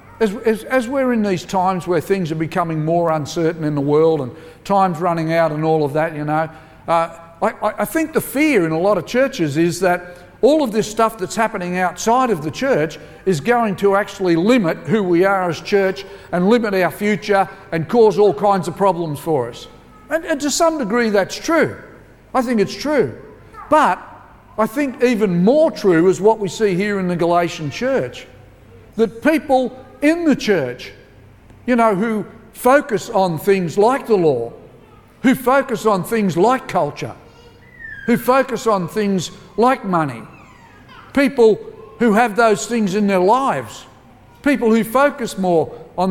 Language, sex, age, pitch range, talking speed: English, male, 50-69, 170-225 Hz, 175 wpm